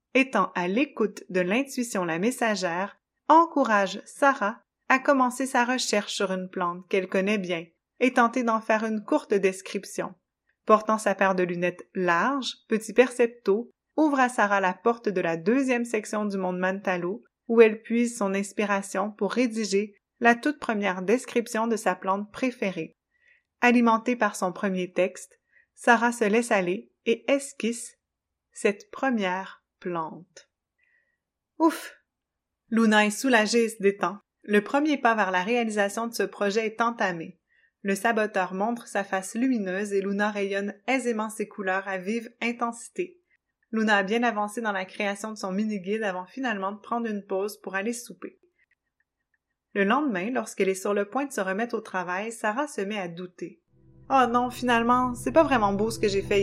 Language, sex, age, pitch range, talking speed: French, female, 30-49, 195-240 Hz, 165 wpm